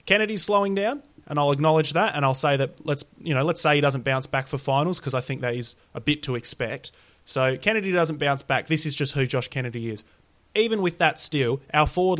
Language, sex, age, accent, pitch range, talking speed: English, male, 30-49, Australian, 125-155 Hz, 240 wpm